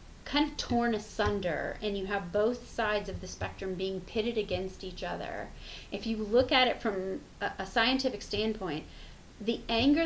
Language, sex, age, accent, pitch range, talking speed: English, female, 30-49, American, 195-250 Hz, 165 wpm